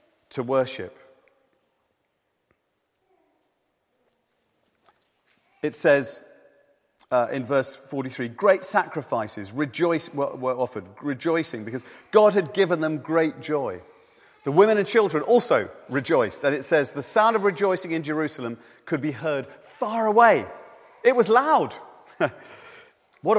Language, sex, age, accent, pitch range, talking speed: English, male, 40-59, British, 140-215 Hz, 115 wpm